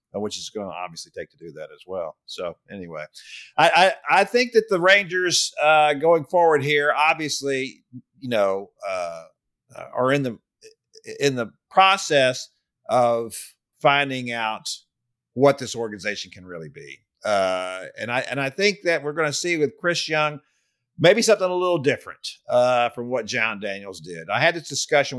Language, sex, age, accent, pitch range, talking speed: English, male, 50-69, American, 115-175 Hz, 170 wpm